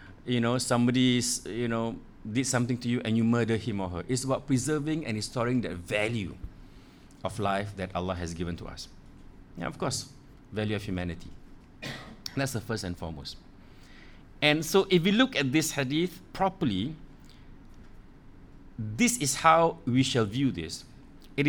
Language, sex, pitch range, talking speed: English, male, 120-165 Hz, 160 wpm